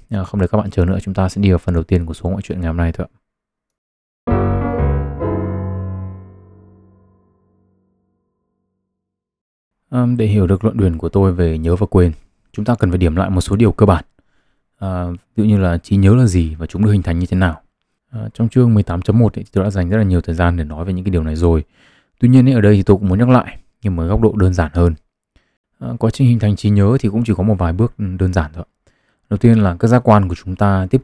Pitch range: 90-110 Hz